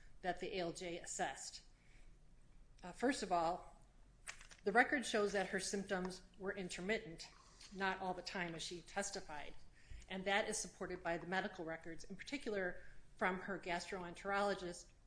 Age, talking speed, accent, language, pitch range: 30-49, 145 wpm, American, English, 170-200 Hz